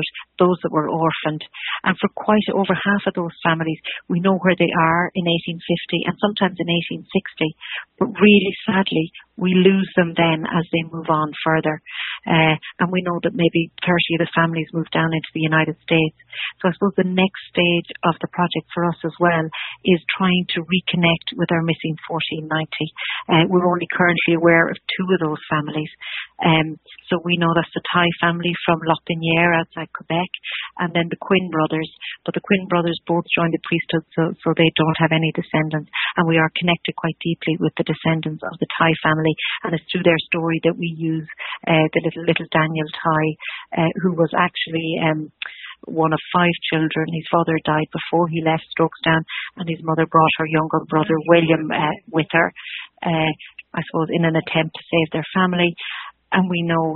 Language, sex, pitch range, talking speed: English, female, 160-175 Hz, 190 wpm